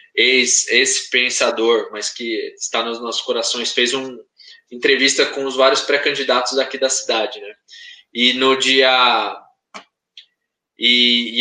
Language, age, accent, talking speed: Portuguese, 20-39, Brazilian, 130 wpm